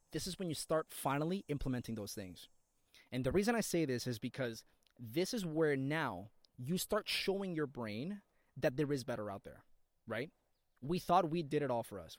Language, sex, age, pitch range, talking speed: English, male, 20-39, 125-170 Hz, 200 wpm